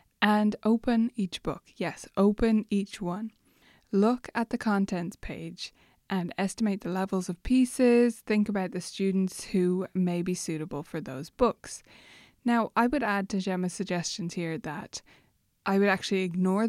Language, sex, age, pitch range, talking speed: English, female, 20-39, 180-220 Hz, 155 wpm